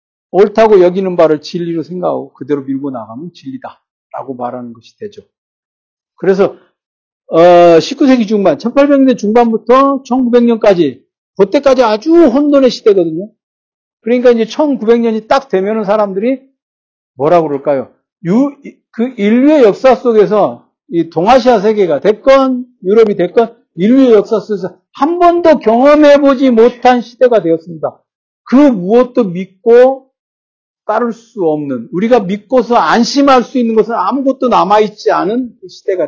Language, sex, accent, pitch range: Korean, male, native, 175-250 Hz